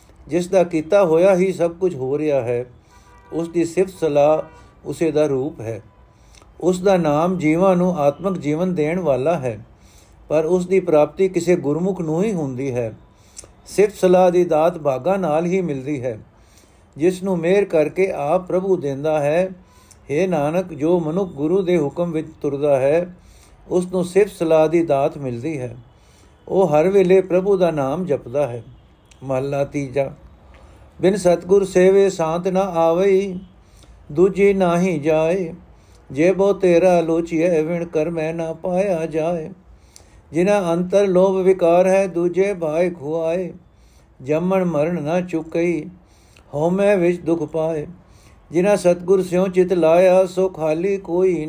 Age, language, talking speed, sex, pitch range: 50-69, Punjabi, 145 wpm, male, 145-185 Hz